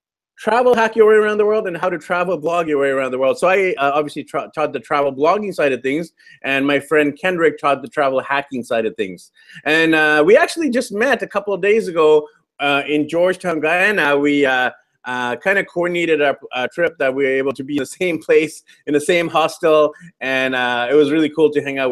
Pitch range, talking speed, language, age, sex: 140-185 Hz, 230 wpm, English, 30-49, male